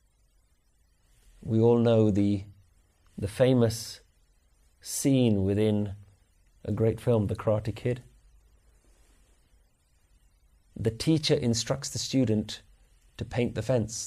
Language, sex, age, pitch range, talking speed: English, male, 30-49, 100-130 Hz, 100 wpm